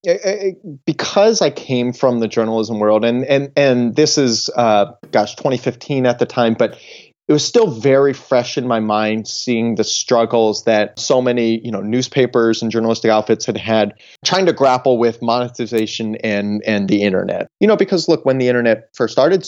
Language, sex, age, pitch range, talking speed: English, male, 30-49, 110-135 Hz, 180 wpm